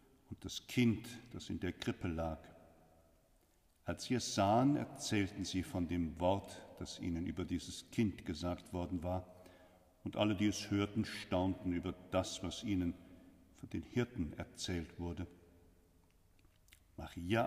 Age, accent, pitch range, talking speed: 50-69, German, 90-125 Hz, 140 wpm